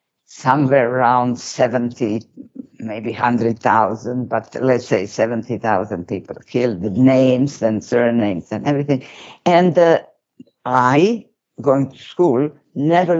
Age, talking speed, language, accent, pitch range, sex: 50-69, 110 wpm, English, Italian, 115-145 Hz, female